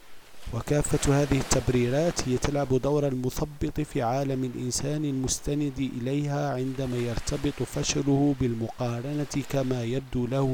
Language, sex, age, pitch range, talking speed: Arabic, male, 40-59, 125-150 Hz, 110 wpm